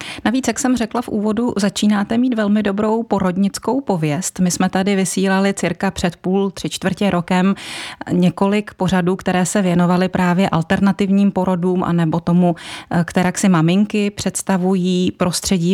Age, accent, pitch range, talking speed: 30-49, native, 175-195 Hz, 140 wpm